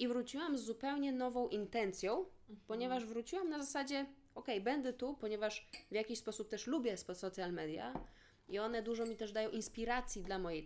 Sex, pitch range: female, 185-245 Hz